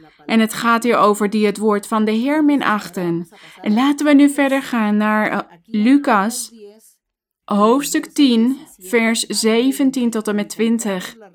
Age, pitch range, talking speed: 20-39, 205-240 Hz, 150 wpm